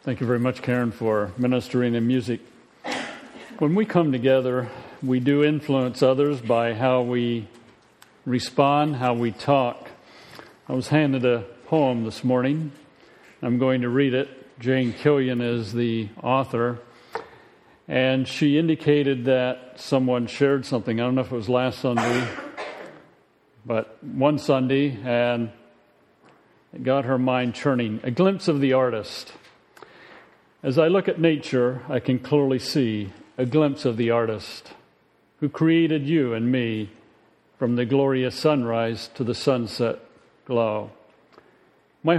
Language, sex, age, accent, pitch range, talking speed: English, male, 50-69, American, 120-140 Hz, 140 wpm